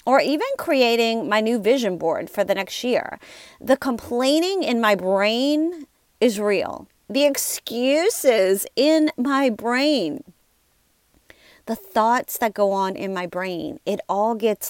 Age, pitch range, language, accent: 30-49, 190-250 Hz, English, American